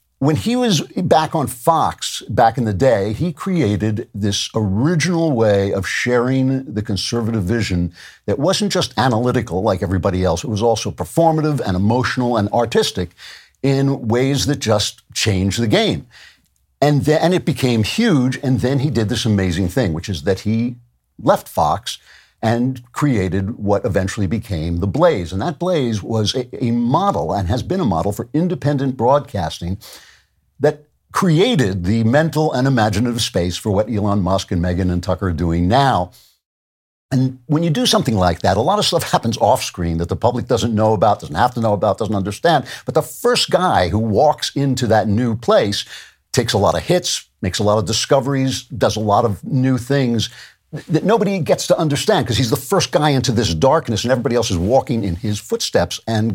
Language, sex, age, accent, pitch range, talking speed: English, male, 60-79, American, 100-140 Hz, 185 wpm